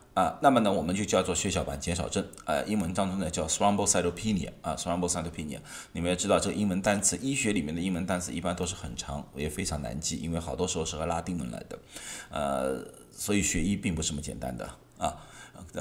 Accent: native